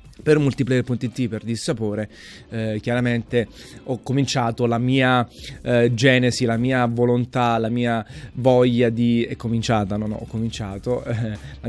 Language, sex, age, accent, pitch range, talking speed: Italian, male, 30-49, native, 115-135 Hz, 140 wpm